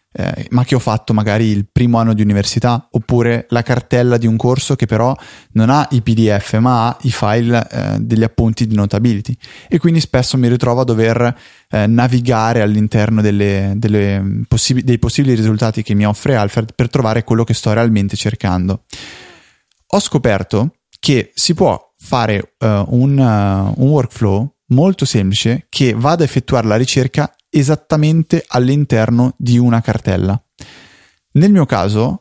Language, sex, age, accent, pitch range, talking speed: Italian, male, 20-39, native, 110-130 Hz, 160 wpm